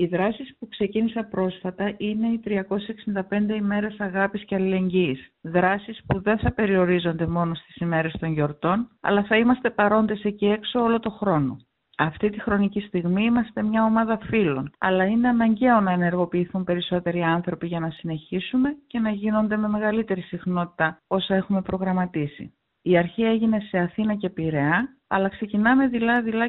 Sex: female